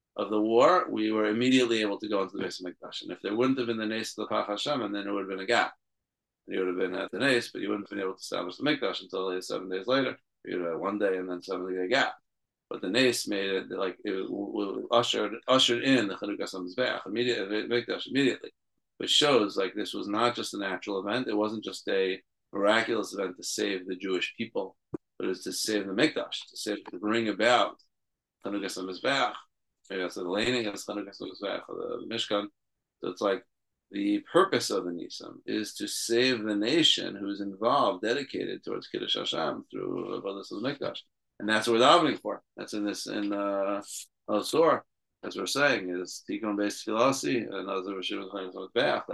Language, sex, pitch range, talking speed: English, male, 95-120 Hz, 210 wpm